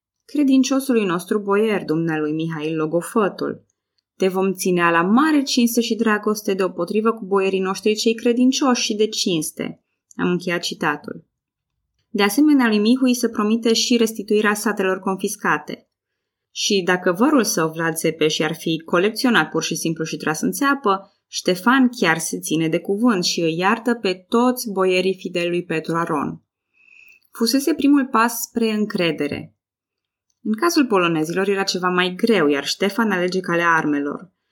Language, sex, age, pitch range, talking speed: Romanian, female, 20-39, 165-230 Hz, 150 wpm